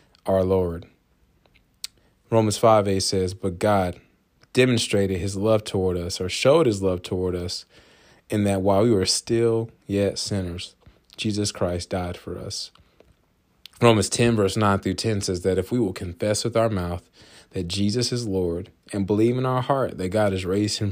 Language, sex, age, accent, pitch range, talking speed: English, male, 20-39, American, 95-105 Hz, 170 wpm